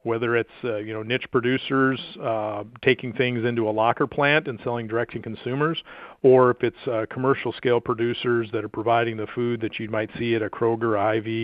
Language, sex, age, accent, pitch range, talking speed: English, male, 40-59, American, 110-130 Hz, 200 wpm